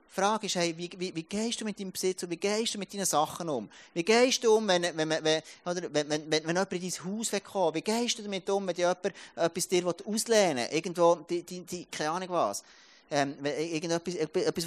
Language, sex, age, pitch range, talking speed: German, male, 30-49, 150-200 Hz, 195 wpm